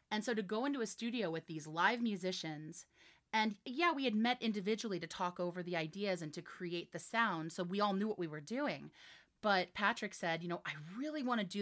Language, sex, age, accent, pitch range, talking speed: English, female, 30-49, American, 165-220 Hz, 230 wpm